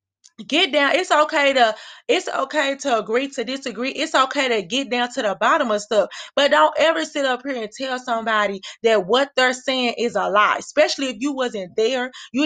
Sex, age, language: female, 20-39, English